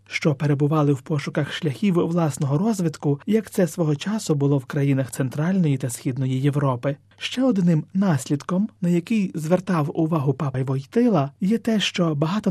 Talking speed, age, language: 150 wpm, 30-49, Ukrainian